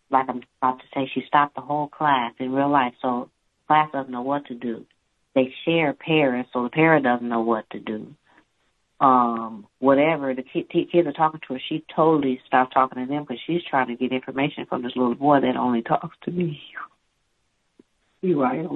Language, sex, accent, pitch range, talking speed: English, female, American, 120-145 Hz, 205 wpm